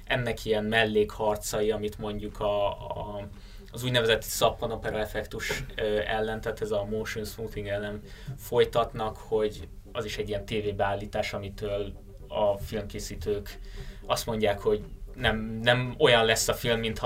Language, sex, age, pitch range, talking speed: Hungarian, male, 20-39, 105-120 Hz, 135 wpm